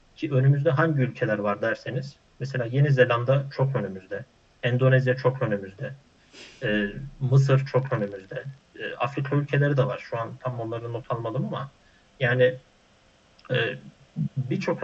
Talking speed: 135 wpm